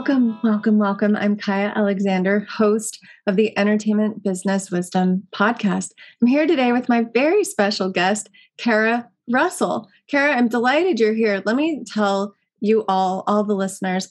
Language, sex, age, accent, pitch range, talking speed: English, female, 30-49, American, 195-230 Hz, 155 wpm